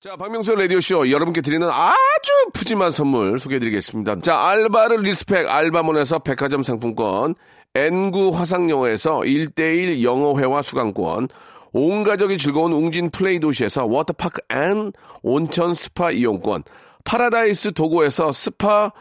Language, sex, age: Korean, male, 40-59